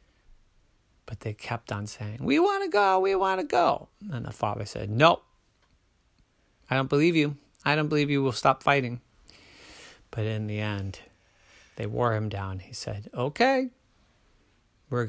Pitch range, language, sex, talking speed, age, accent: 105-150 Hz, English, male, 165 wpm, 30-49, American